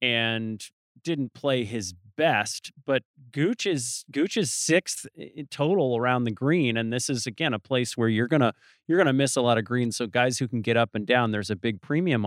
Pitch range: 115-155 Hz